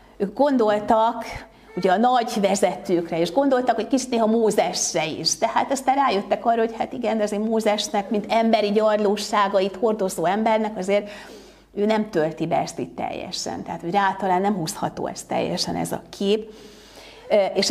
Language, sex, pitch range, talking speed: Hungarian, female, 185-235 Hz, 160 wpm